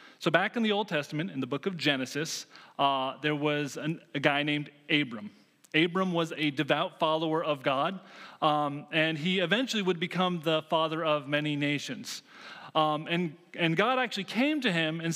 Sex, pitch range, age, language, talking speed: male, 150-190 Hz, 30-49, English, 180 wpm